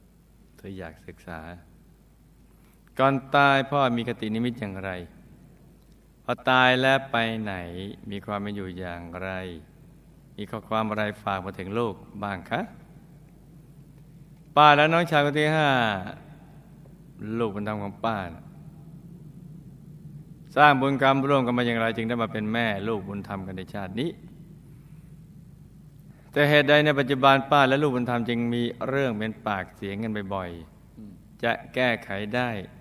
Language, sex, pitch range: Thai, male, 105-140 Hz